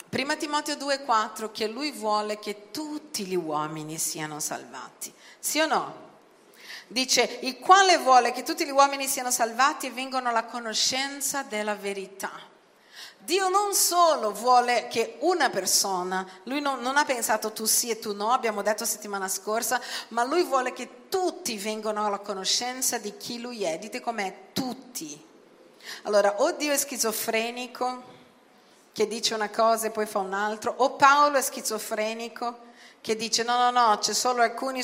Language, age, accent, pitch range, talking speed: Italian, 40-59, native, 205-255 Hz, 160 wpm